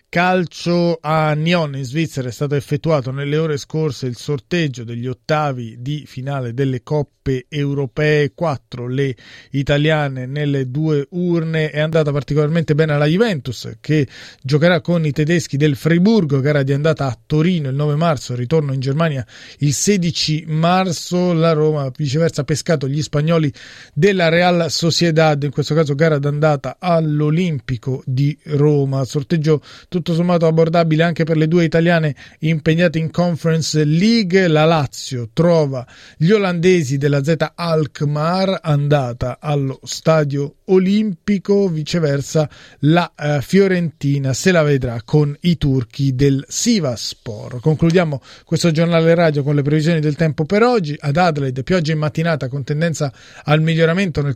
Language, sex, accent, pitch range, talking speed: Italian, male, native, 140-165 Hz, 140 wpm